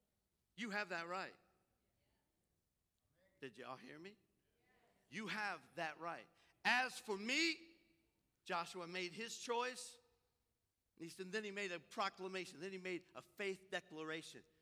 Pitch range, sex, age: 165-240 Hz, male, 50-69